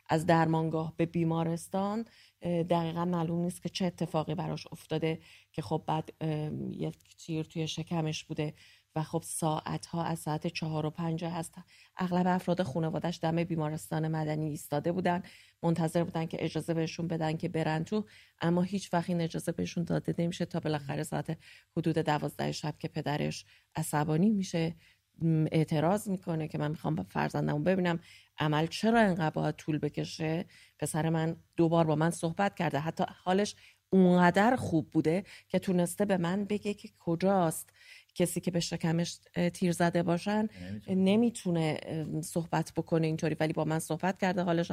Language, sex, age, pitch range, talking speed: English, female, 30-49, 155-175 Hz, 150 wpm